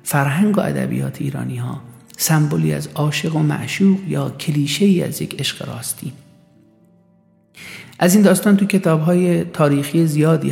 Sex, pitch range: male, 140-170 Hz